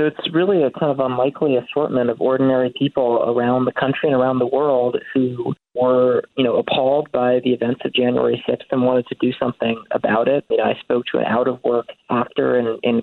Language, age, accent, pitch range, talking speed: English, 30-49, American, 120-135 Hz, 205 wpm